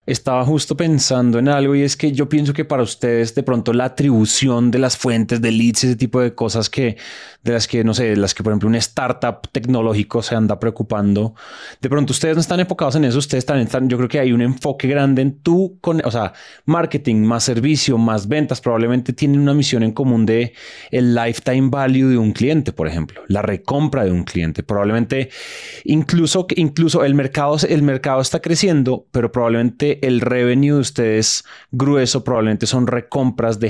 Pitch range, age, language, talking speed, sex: 115-145 Hz, 30-49, Spanish, 200 wpm, male